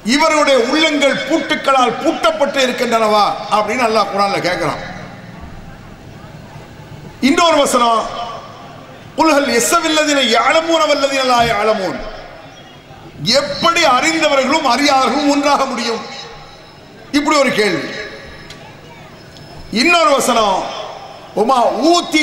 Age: 50-69